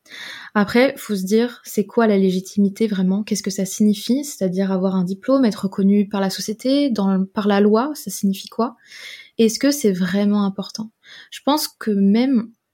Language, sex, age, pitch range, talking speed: French, female, 20-39, 190-225 Hz, 180 wpm